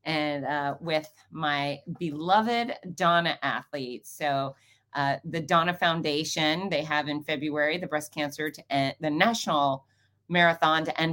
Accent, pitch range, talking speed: American, 150-195 Hz, 135 wpm